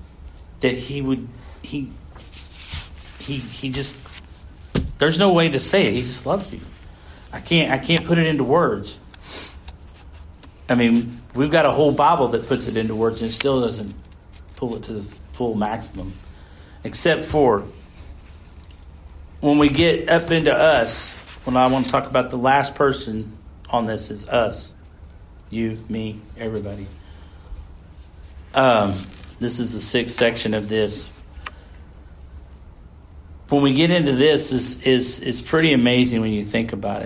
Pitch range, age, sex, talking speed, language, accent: 80-130 Hz, 50-69, male, 145 wpm, English, American